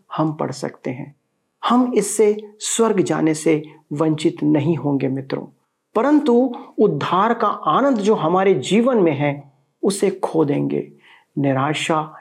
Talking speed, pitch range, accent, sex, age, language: 130 wpm, 145-210 Hz, native, male, 40-59, Hindi